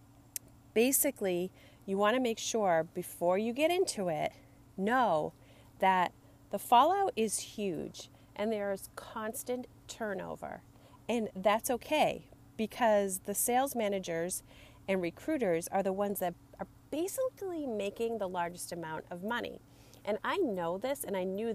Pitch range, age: 155-230 Hz, 30-49